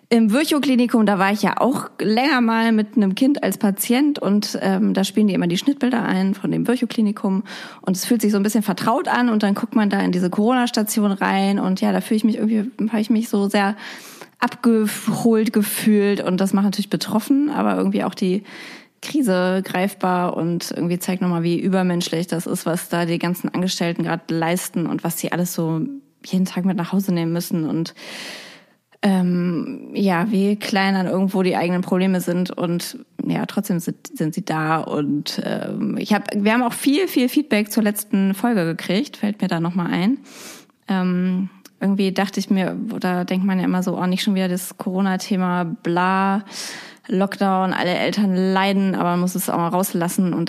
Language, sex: German, female